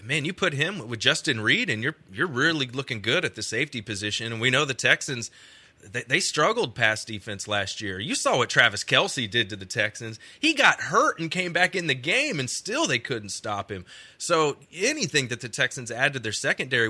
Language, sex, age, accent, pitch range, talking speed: English, male, 30-49, American, 115-150 Hz, 220 wpm